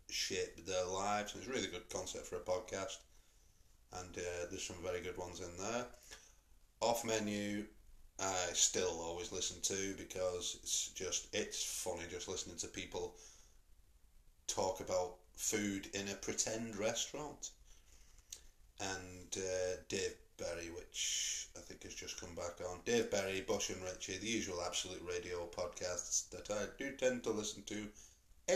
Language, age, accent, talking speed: English, 30-49, British, 155 wpm